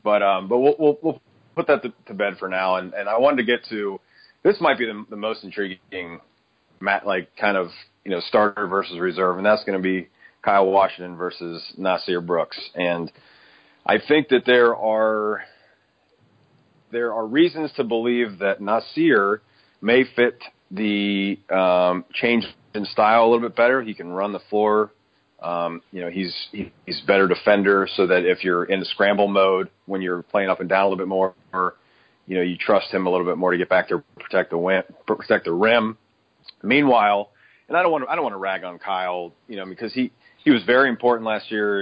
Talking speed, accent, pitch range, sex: 200 wpm, American, 95-115 Hz, male